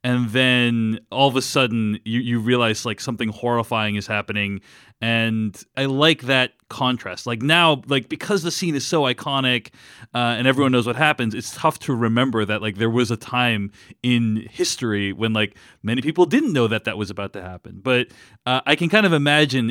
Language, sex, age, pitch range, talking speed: English, male, 30-49, 105-130 Hz, 200 wpm